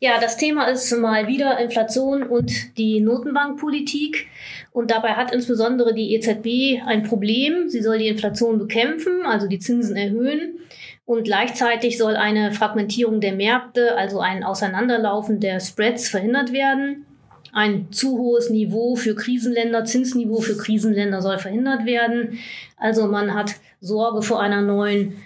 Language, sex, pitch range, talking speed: German, female, 205-245 Hz, 145 wpm